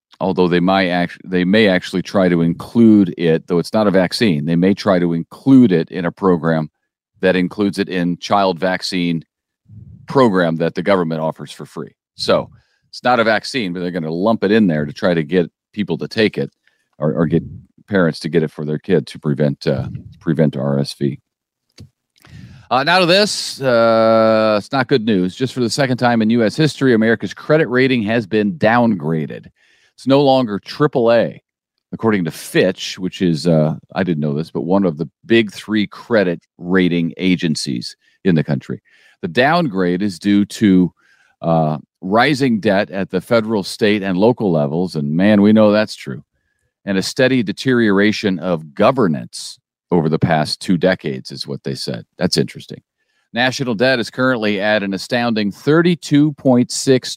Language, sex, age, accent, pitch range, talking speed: English, male, 40-59, American, 85-120 Hz, 175 wpm